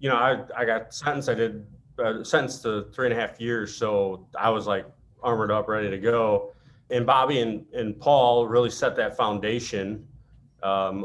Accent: American